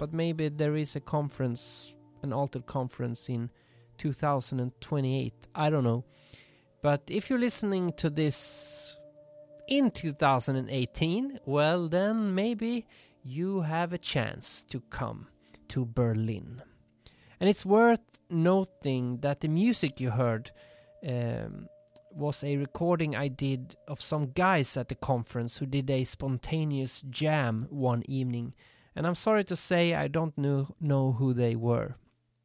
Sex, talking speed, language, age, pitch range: male, 135 wpm, English, 30-49, 125-170 Hz